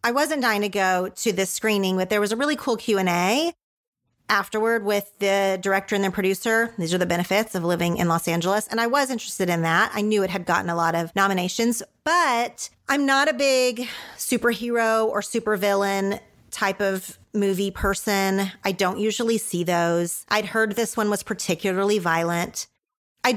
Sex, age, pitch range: female, 30-49, 190-245 Hz